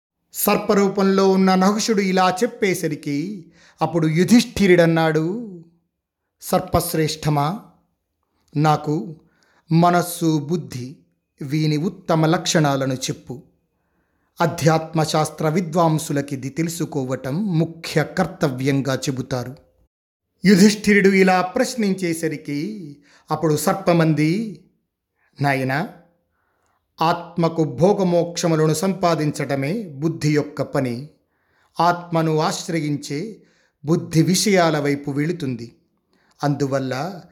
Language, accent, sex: Telugu, native, male